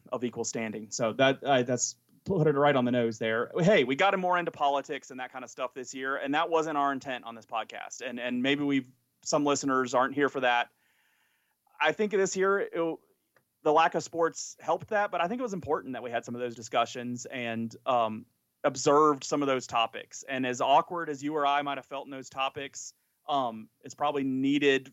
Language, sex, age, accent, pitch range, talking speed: English, male, 30-49, American, 125-150 Hz, 225 wpm